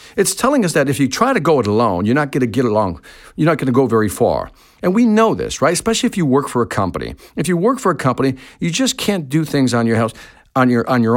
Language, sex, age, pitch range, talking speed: English, male, 50-69, 130-220 Hz, 260 wpm